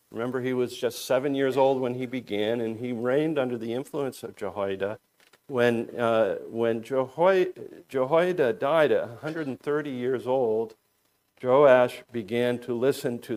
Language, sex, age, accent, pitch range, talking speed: English, male, 50-69, American, 115-145 Hz, 150 wpm